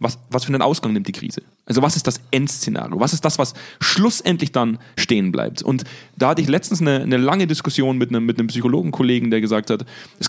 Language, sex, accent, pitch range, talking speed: German, male, German, 125-160 Hz, 220 wpm